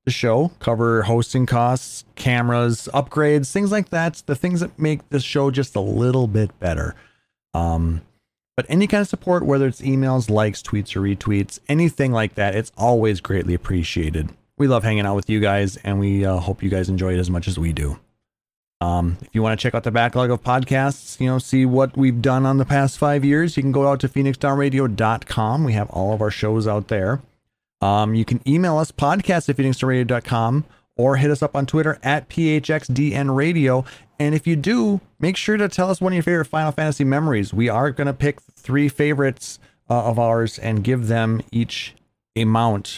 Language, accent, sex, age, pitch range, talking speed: English, American, male, 30-49, 105-145 Hz, 205 wpm